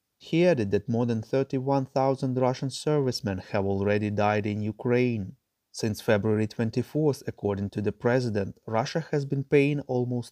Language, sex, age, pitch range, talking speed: English, male, 20-39, 105-140 Hz, 145 wpm